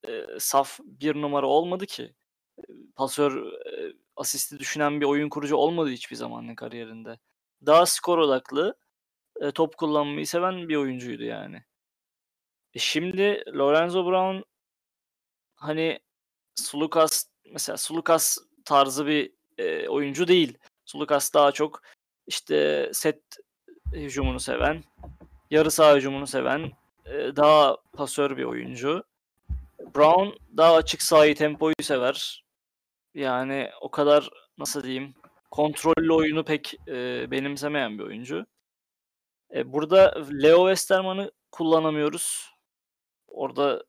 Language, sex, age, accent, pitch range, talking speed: Turkish, male, 20-39, native, 135-165 Hz, 110 wpm